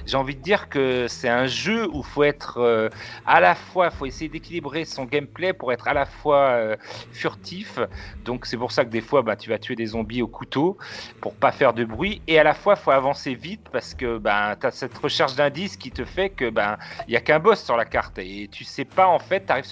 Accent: French